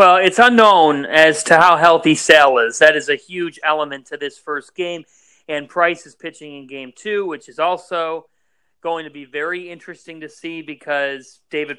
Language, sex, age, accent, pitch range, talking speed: English, male, 40-59, American, 170-235 Hz, 190 wpm